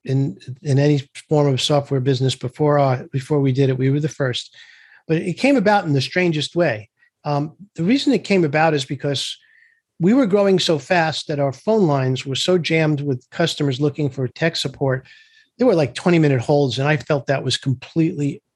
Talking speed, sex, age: 205 wpm, male, 50-69